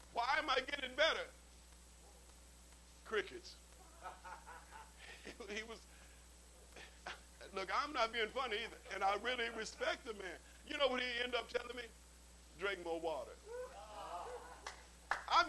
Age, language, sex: 50-69, English, male